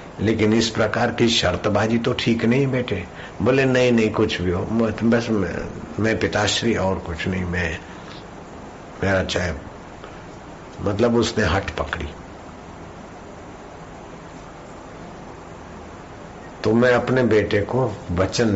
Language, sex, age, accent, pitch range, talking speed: Hindi, male, 60-79, native, 90-110 Hz, 115 wpm